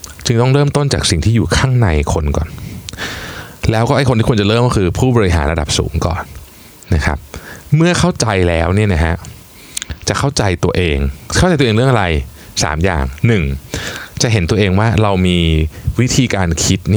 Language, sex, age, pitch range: Thai, male, 20-39, 85-115 Hz